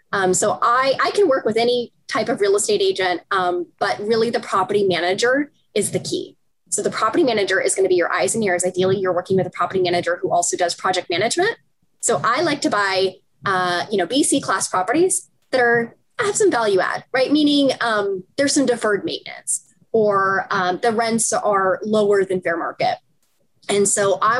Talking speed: 200 wpm